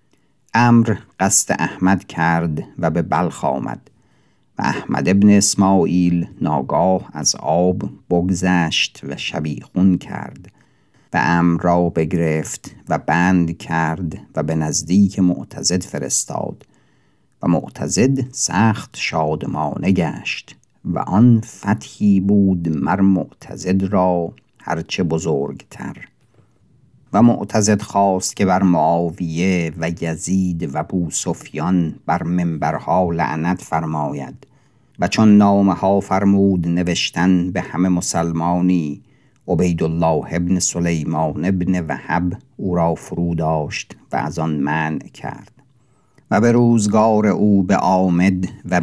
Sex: male